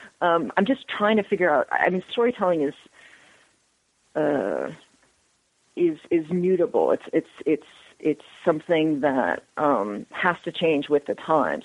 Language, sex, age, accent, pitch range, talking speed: English, female, 40-59, American, 150-185 Hz, 145 wpm